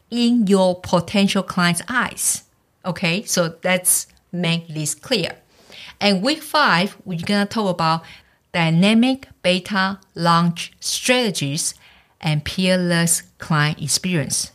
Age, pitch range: 50-69, 165-205 Hz